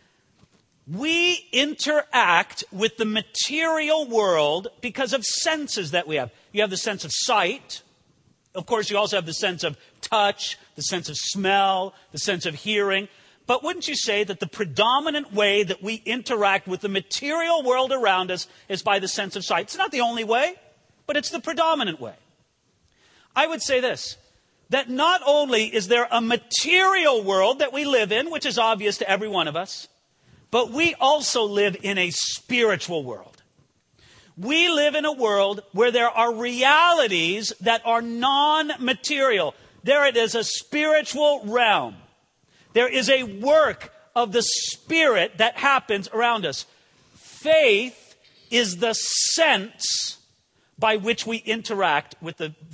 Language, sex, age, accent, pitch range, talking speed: English, male, 40-59, American, 200-285 Hz, 160 wpm